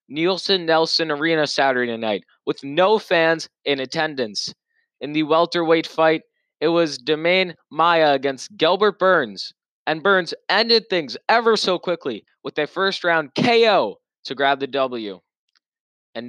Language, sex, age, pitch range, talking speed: English, male, 20-39, 135-175 Hz, 135 wpm